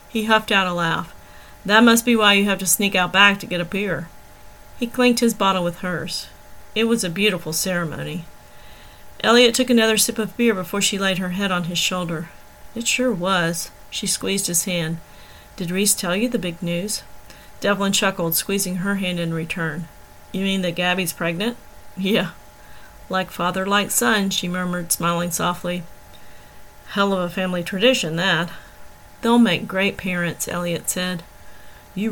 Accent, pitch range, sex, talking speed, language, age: American, 175-210 Hz, female, 170 wpm, English, 40-59